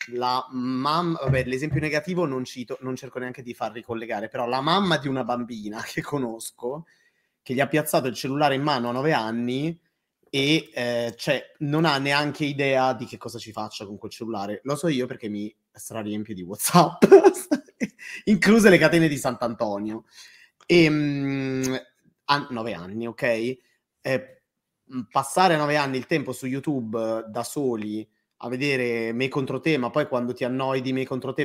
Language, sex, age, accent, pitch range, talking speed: Italian, male, 30-49, native, 115-145 Hz, 170 wpm